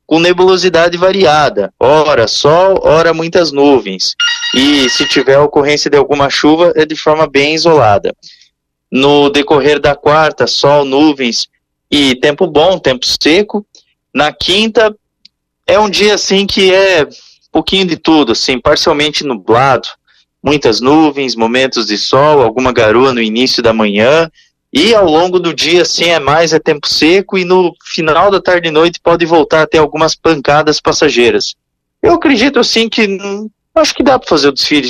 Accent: Brazilian